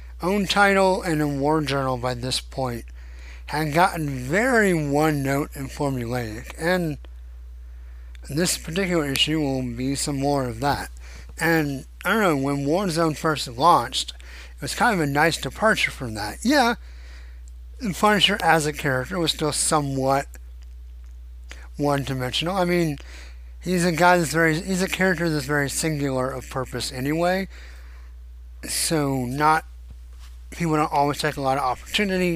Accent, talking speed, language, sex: American, 145 wpm, English, male